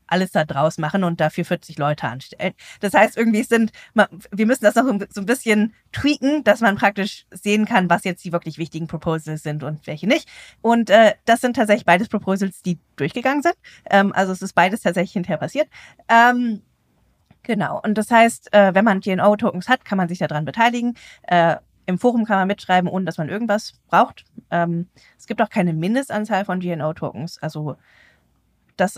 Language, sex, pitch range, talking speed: German, female, 175-225 Hz, 185 wpm